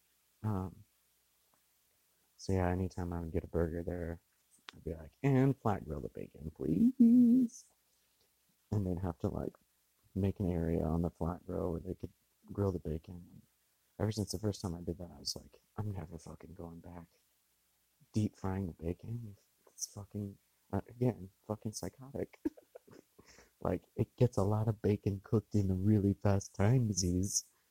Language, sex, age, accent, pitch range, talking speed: English, male, 40-59, American, 70-105 Hz, 165 wpm